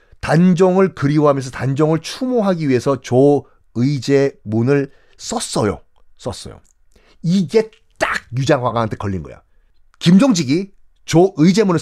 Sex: male